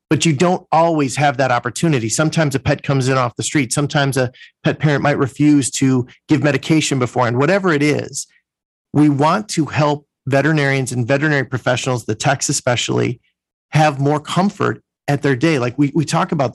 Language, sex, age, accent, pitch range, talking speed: English, male, 40-59, American, 130-150 Hz, 180 wpm